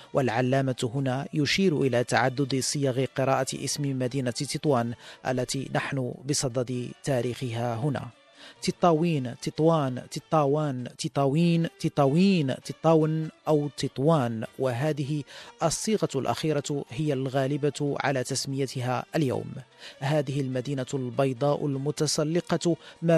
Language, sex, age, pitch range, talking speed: Arabic, male, 40-59, 130-150 Hz, 95 wpm